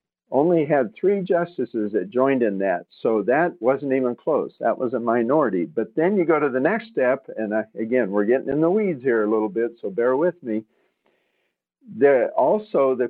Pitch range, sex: 110-140 Hz, male